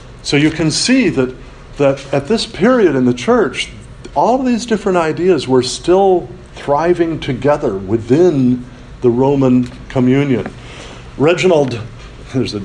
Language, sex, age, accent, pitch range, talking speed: English, male, 50-69, American, 115-140 Hz, 135 wpm